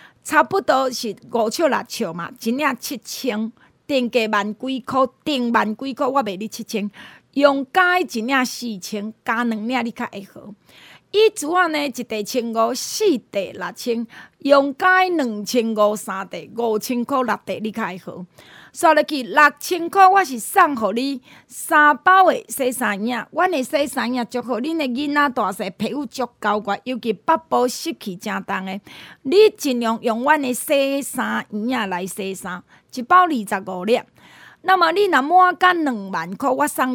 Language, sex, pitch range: Chinese, female, 220-295 Hz